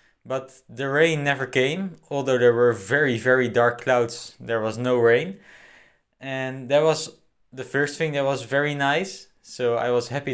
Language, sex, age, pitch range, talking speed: English, male, 20-39, 115-140 Hz, 175 wpm